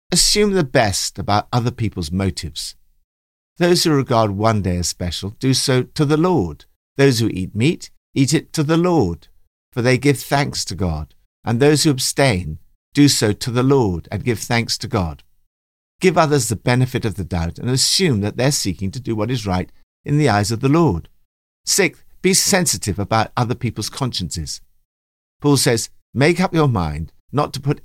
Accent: British